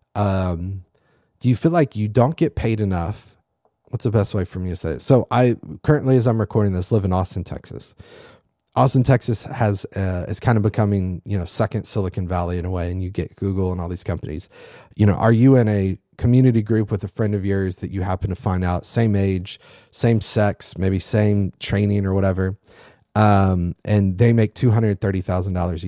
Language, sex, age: English, male, 30-49